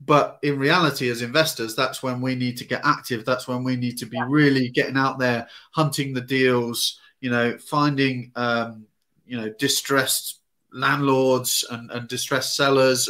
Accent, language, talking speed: British, English, 170 wpm